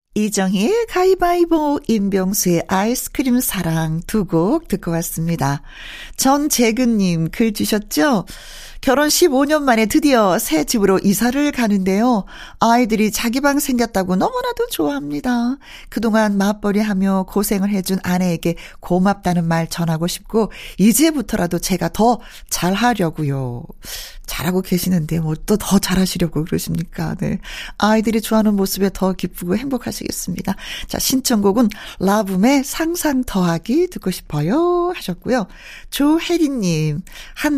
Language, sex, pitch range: Korean, female, 180-245 Hz